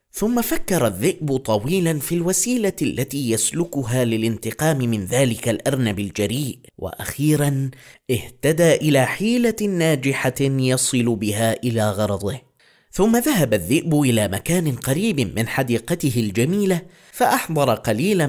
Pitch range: 120-175 Hz